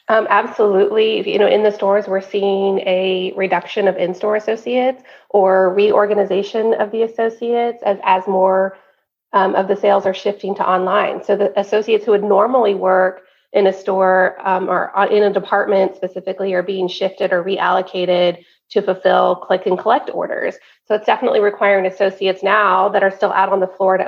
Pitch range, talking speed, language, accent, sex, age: 185-210 Hz, 175 wpm, English, American, female, 30-49